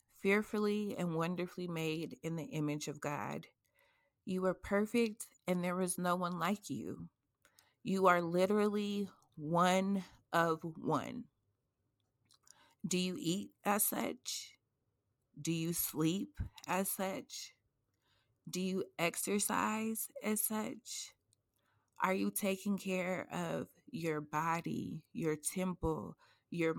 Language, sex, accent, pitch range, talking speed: English, female, American, 160-195 Hz, 110 wpm